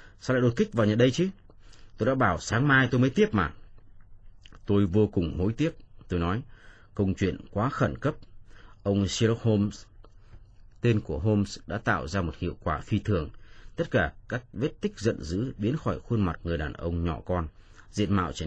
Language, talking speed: Vietnamese, 200 wpm